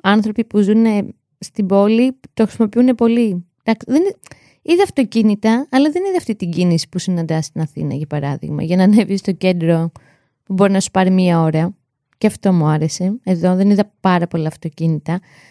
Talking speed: 180 wpm